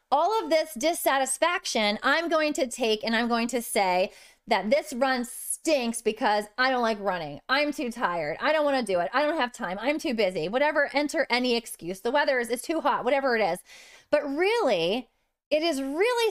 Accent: American